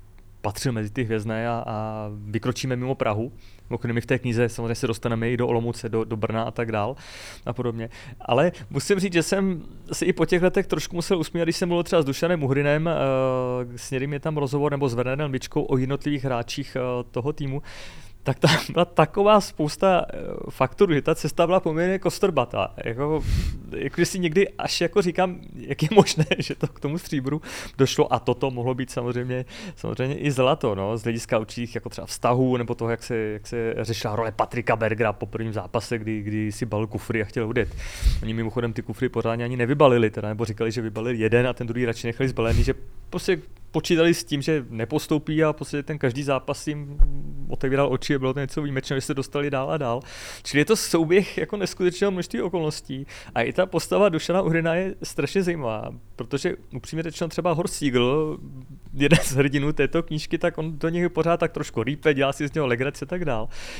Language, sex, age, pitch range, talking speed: Czech, male, 30-49, 115-160 Hz, 200 wpm